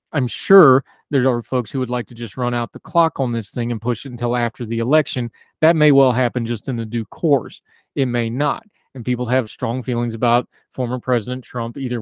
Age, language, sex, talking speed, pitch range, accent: 30-49, English, male, 230 wpm, 120-140 Hz, American